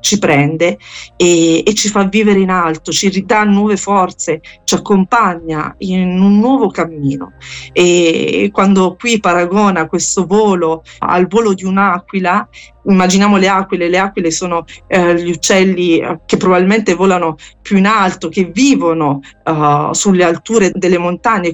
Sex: female